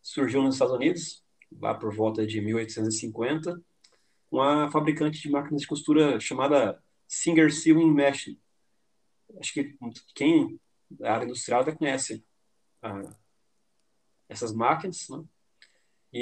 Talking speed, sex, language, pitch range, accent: 115 wpm, male, Portuguese, 130-160 Hz, Brazilian